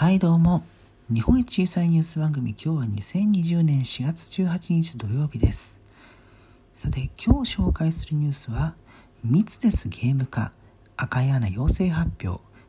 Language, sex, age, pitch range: Japanese, male, 40-59, 105-155 Hz